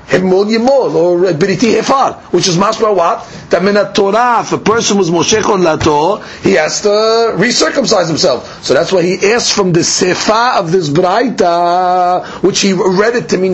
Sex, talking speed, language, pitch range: male, 170 wpm, English, 180-230 Hz